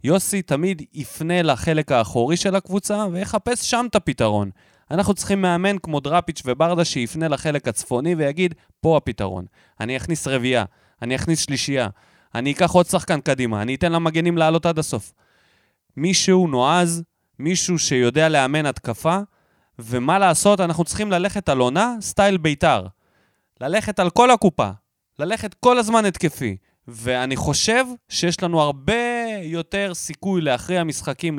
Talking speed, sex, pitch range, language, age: 135 wpm, male, 130-195 Hz, Hebrew, 20-39